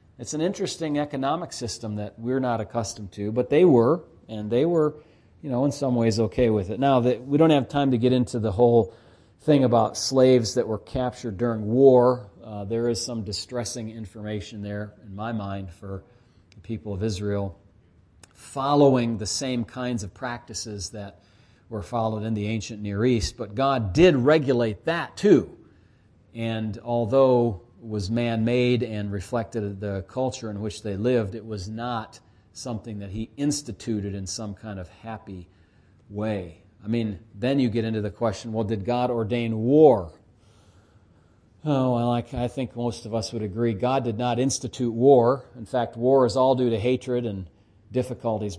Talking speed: 175 wpm